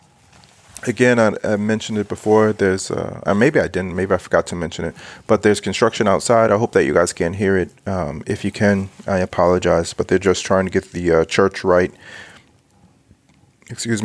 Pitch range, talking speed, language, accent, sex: 95-110 Hz, 195 wpm, English, American, male